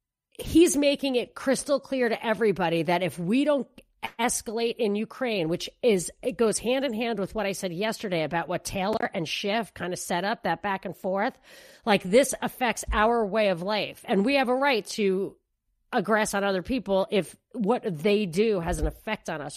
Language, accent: English, American